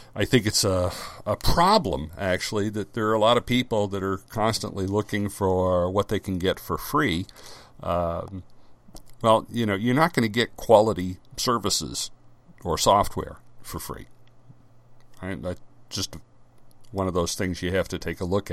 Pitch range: 90-120 Hz